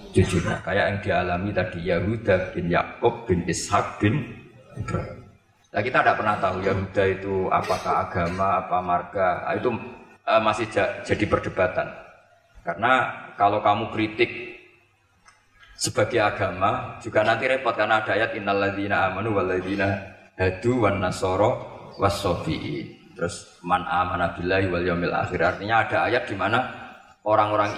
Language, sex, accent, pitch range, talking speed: Indonesian, male, native, 100-120 Hz, 130 wpm